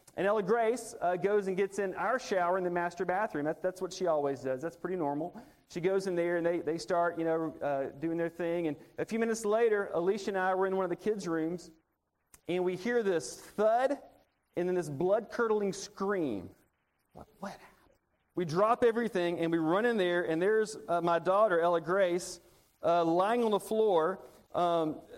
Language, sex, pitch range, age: English, male, 170-210 Hz, 40-59